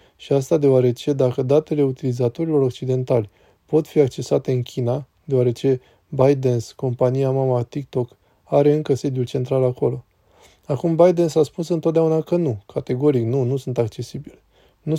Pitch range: 125-150 Hz